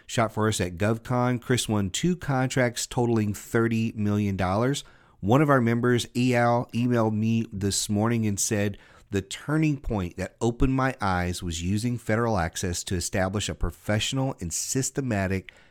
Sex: male